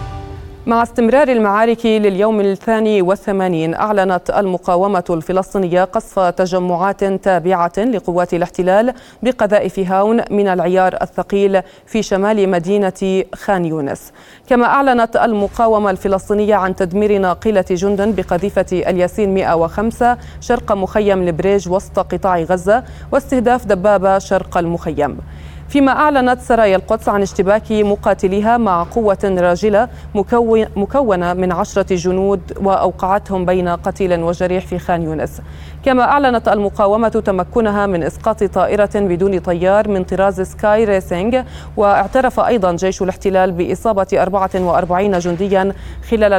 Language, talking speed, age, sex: Arabic, 115 wpm, 30-49, female